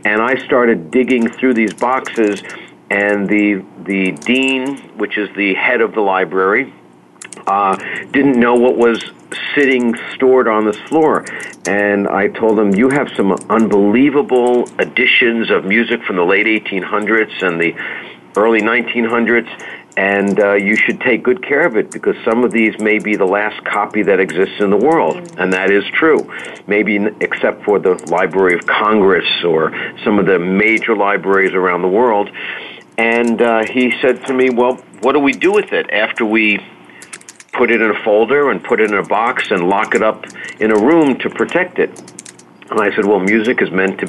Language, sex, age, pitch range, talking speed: English, male, 50-69, 100-120 Hz, 180 wpm